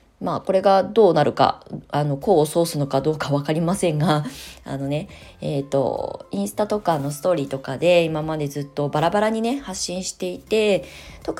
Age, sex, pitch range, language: 20-39, female, 145-185 Hz, Japanese